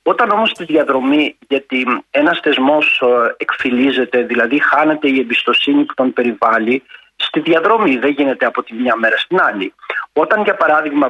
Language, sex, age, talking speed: Greek, male, 40-59, 150 wpm